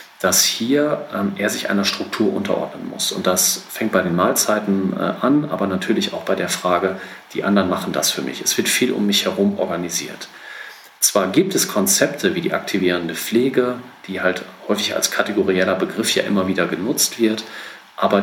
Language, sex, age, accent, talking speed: German, male, 40-59, German, 185 wpm